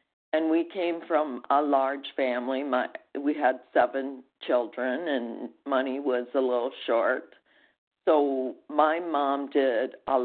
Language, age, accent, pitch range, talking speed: English, 50-69, American, 135-165 Hz, 130 wpm